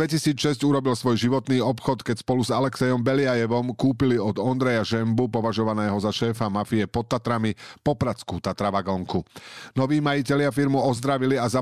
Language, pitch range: Slovak, 105-135 Hz